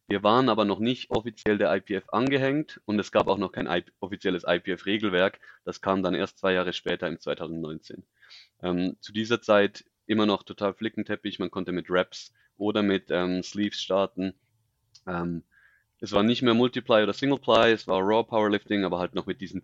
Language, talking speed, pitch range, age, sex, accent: German, 185 wpm, 95-110 Hz, 30-49, male, German